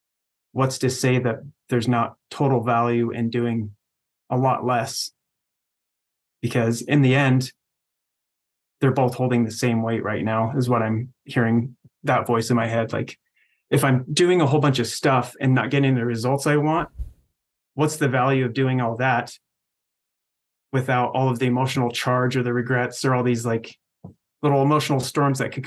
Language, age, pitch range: English, 20-39, 120-135 Hz